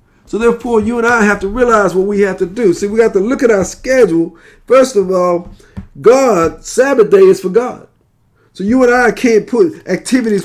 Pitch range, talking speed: 170-225 Hz, 210 wpm